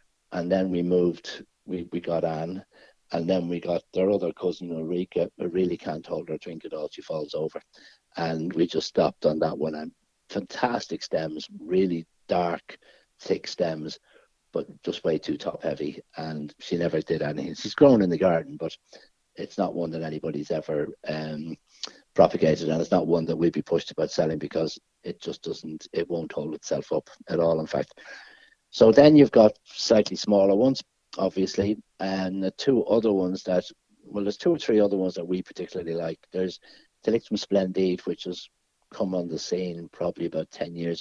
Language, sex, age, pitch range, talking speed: English, male, 60-79, 80-95 Hz, 185 wpm